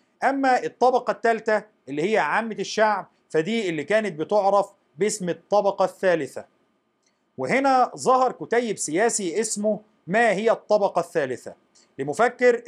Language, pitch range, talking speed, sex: Arabic, 175-235 Hz, 115 wpm, male